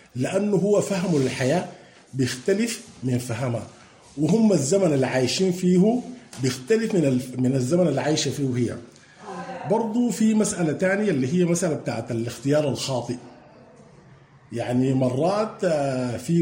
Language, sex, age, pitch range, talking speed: English, male, 50-69, 130-180 Hz, 115 wpm